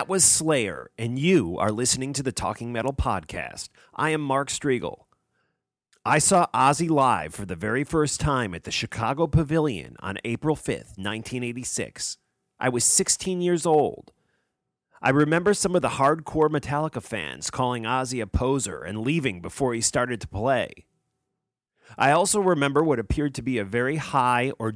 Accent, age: American, 40-59